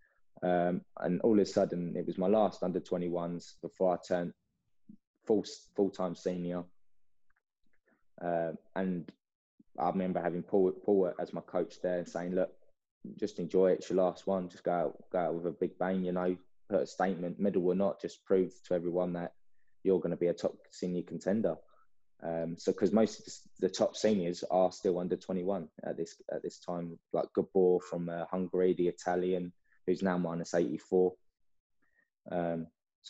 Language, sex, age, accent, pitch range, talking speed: English, male, 20-39, British, 85-95 Hz, 165 wpm